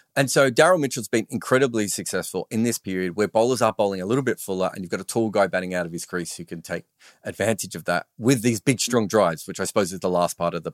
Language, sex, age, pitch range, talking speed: English, male, 30-49, 100-140 Hz, 275 wpm